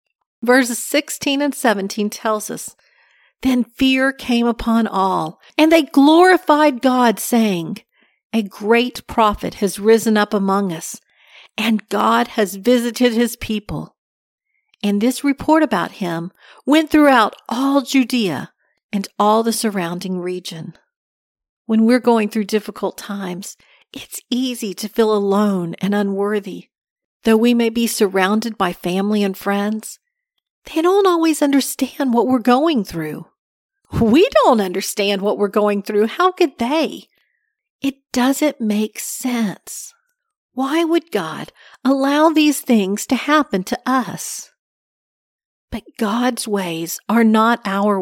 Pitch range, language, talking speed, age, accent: 205-275 Hz, English, 130 wpm, 50-69, American